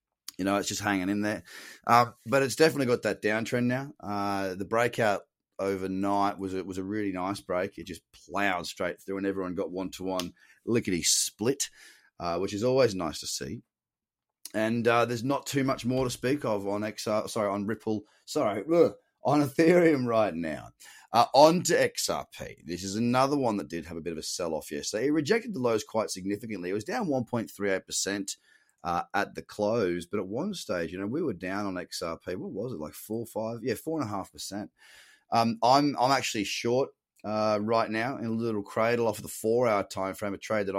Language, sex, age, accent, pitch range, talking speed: English, male, 30-49, Australian, 100-120 Hz, 205 wpm